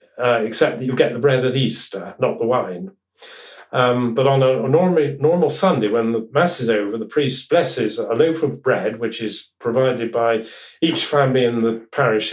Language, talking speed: English, 200 wpm